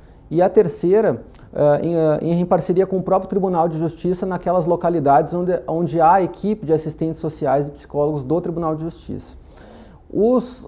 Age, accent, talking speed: 30-49, Brazilian, 150 wpm